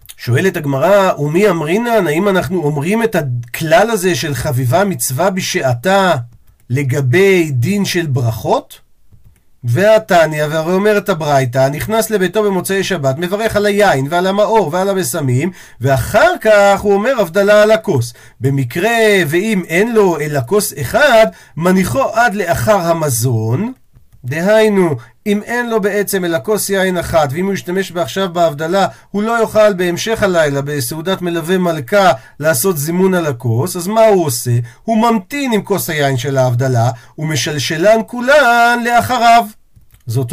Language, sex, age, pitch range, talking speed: Hebrew, male, 50-69, 145-205 Hz, 135 wpm